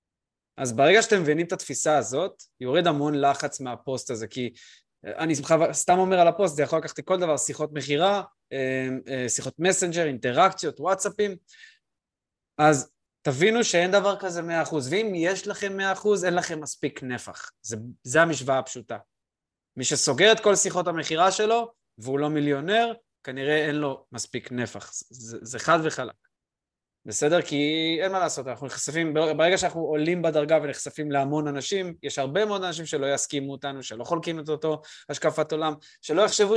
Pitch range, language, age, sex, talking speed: 140-185 Hz, Hebrew, 20-39, male, 160 wpm